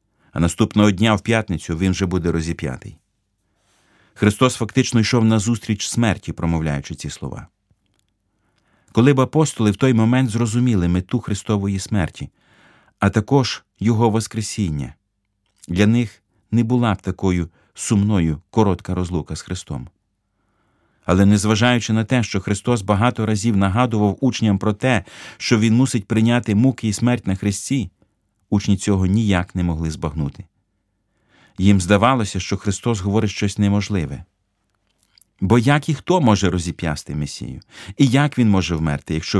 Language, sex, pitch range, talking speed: Ukrainian, male, 95-115 Hz, 135 wpm